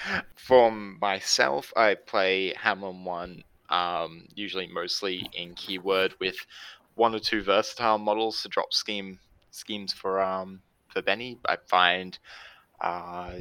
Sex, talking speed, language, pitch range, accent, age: male, 125 wpm, English, 90-100 Hz, Australian, 20-39